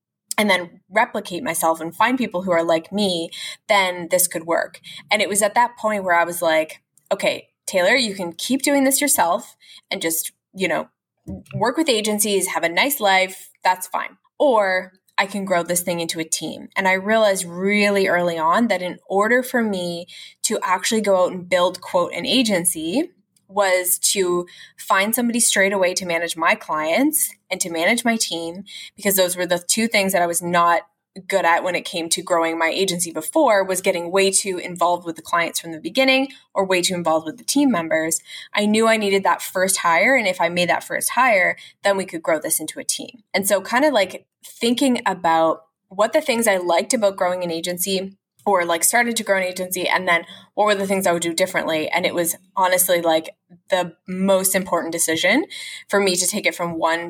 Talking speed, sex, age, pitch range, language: 210 wpm, female, 20-39, 170-210 Hz, English